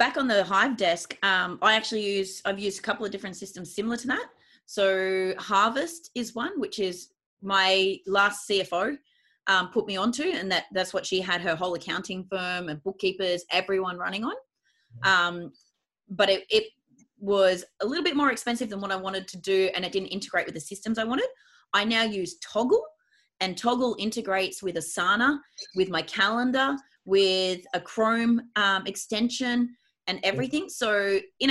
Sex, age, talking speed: female, 30-49, 175 wpm